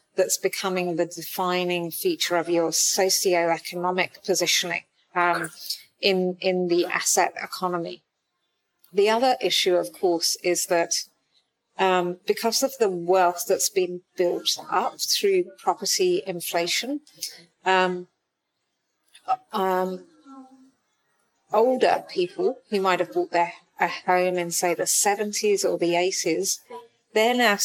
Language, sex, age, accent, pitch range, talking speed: English, female, 40-59, British, 175-210 Hz, 115 wpm